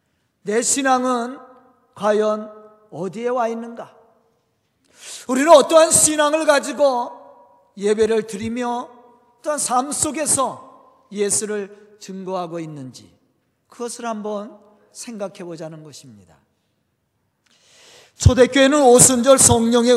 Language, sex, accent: Korean, male, native